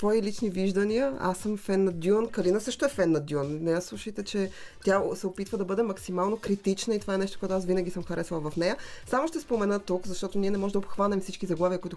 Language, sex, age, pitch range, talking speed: Bulgarian, female, 20-39, 170-210 Hz, 245 wpm